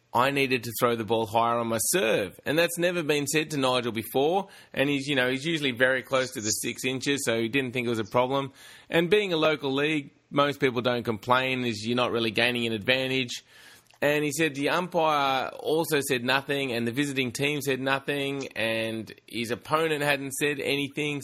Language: English